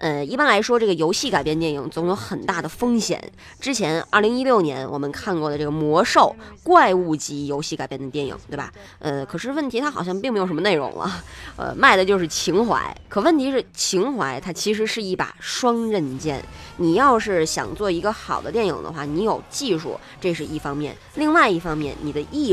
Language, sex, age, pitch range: Chinese, female, 20-39, 150-245 Hz